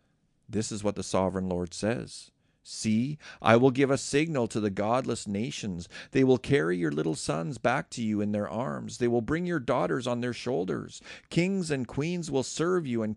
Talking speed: 200 wpm